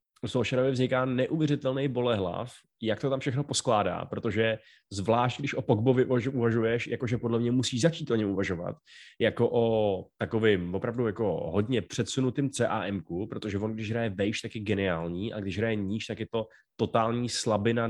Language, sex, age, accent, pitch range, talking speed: Czech, male, 20-39, native, 110-130 Hz, 160 wpm